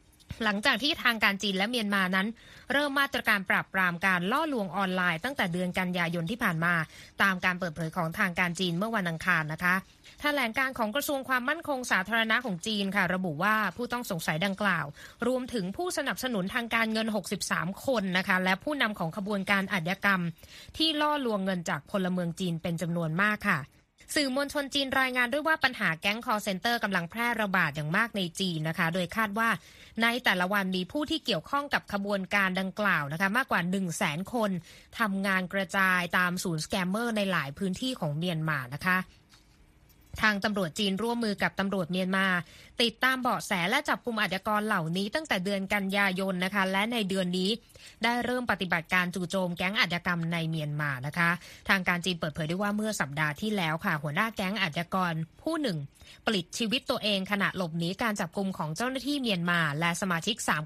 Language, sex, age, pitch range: Thai, female, 20-39, 180-225 Hz